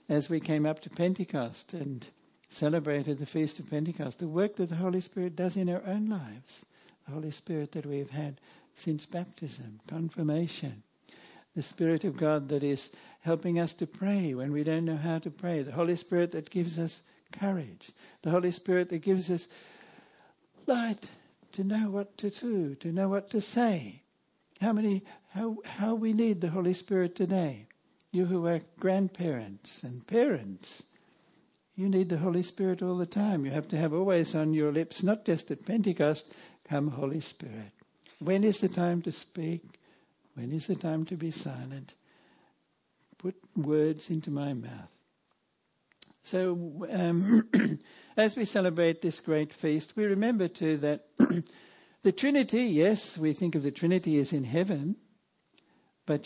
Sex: male